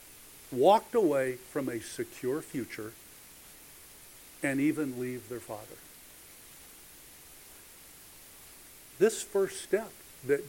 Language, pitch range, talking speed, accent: English, 145-195 Hz, 85 wpm, American